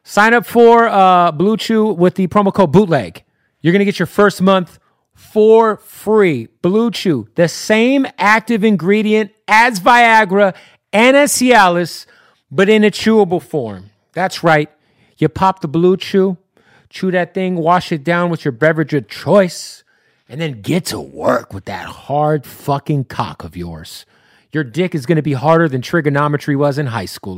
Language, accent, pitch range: English, American, 145-215 Hz